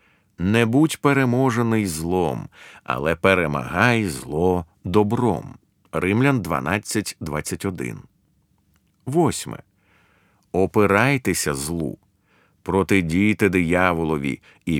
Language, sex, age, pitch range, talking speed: Ukrainian, male, 50-69, 85-120 Hz, 65 wpm